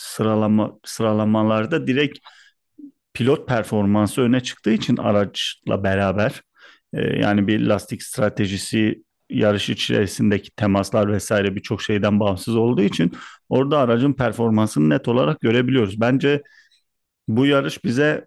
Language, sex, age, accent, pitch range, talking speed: Turkish, male, 40-59, native, 105-130 Hz, 110 wpm